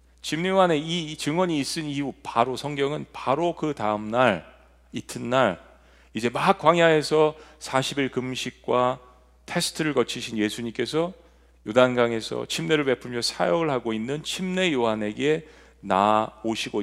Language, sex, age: Korean, male, 40-59